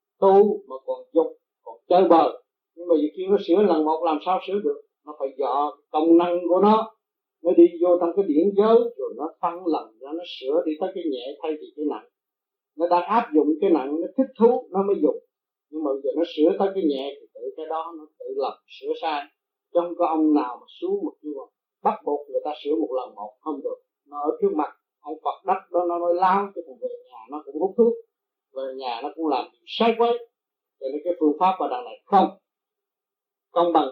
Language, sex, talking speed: Vietnamese, male, 230 wpm